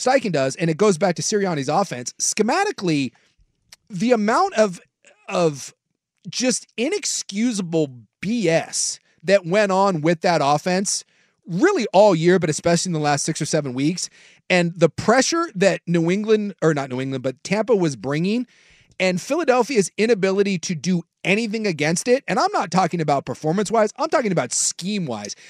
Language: English